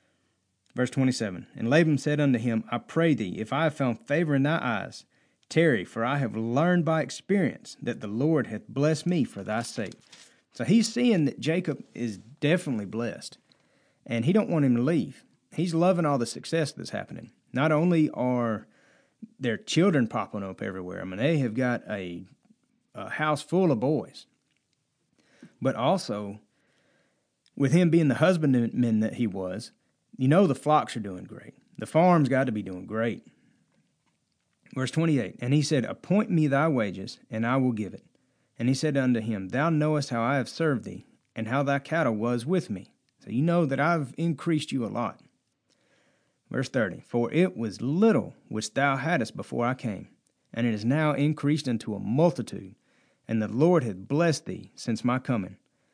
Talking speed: 180 wpm